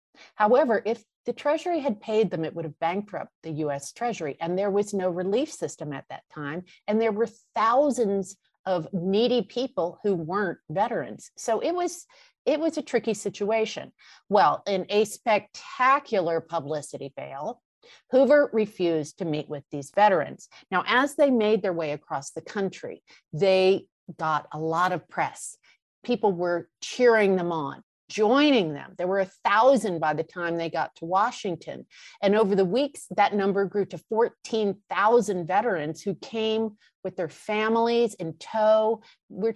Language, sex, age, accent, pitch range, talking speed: English, female, 50-69, American, 175-225 Hz, 160 wpm